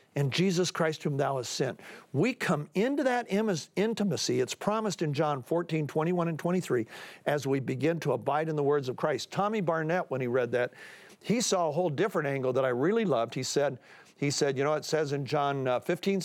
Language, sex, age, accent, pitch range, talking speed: English, male, 50-69, American, 145-205 Hz, 210 wpm